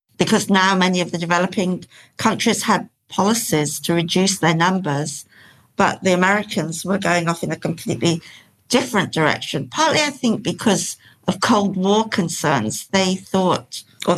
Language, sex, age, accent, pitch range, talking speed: English, female, 60-79, British, 155-190 Hz, 150 wpm